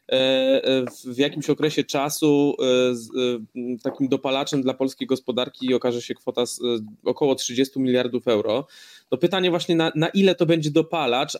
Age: 20-39